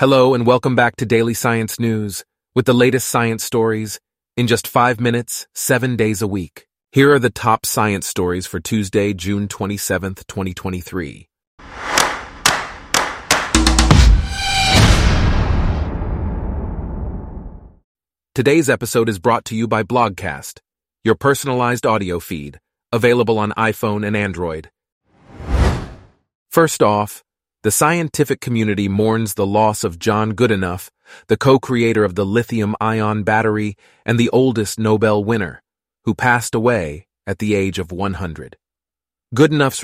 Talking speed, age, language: 120 wpm, 30-49, English